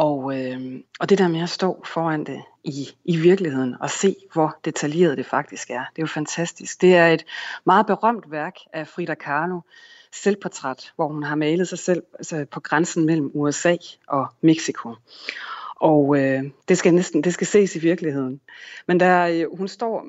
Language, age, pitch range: Danish, 30-49, 145-185 Hz